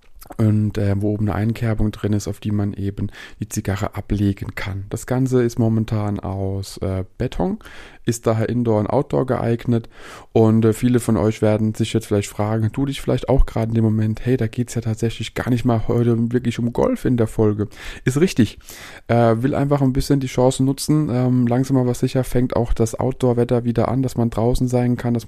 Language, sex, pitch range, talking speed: German, male, 105-120 Hz, 210 wpm